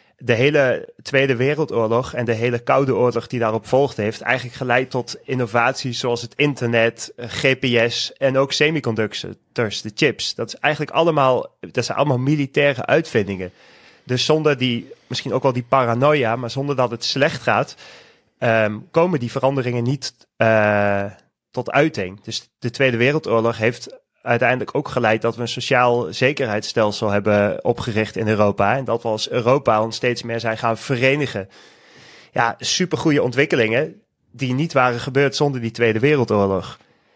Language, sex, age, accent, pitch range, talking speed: Dutch, male, 30-49, Dutch, 115-135 Hz, 155 wpm